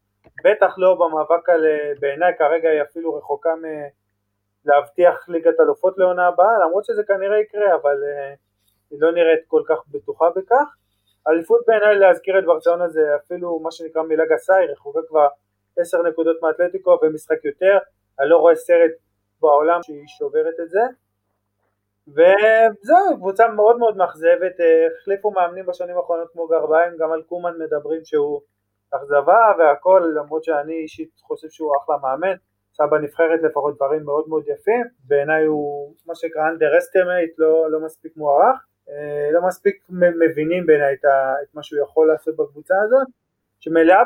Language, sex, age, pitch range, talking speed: Hebrew, male, 20-39, 150-195 Hz, 145 wpm